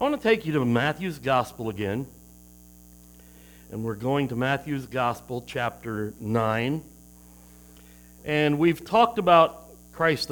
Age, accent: 60-79, American